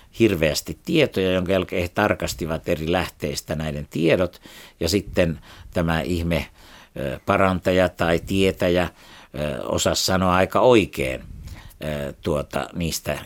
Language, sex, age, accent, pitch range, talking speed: Finnish, male, 60-79, native, 80-95 Hz, 105 wpm